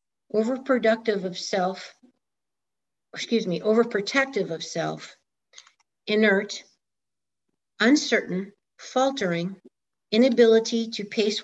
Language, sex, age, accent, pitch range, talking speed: English, female, 60-79, American, 185-225 Hz, 75 wpm